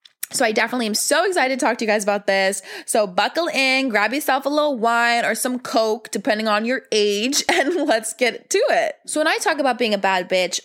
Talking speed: 235 wpm